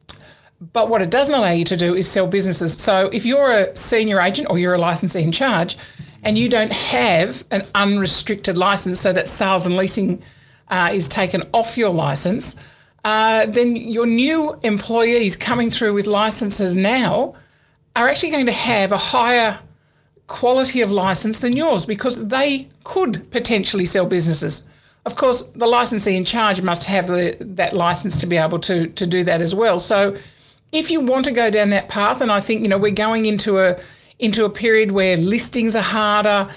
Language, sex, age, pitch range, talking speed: English, male, 50-69, 185-230 Hz, 185 wpm